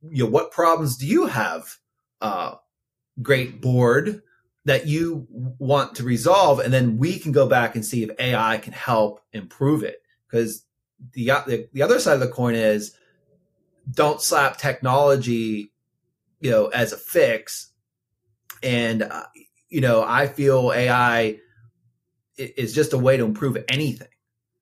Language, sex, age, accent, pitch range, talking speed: English, male, 30-49, American, 115-140 Hz, 145 wpm